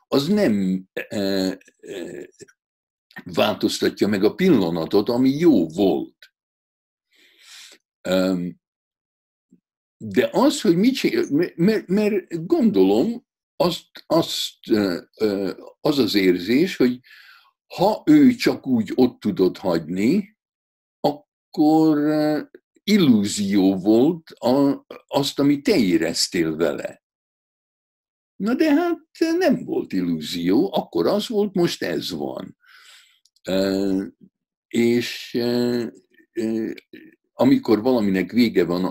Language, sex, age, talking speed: Hungarian, male, 60-79, 90 wpm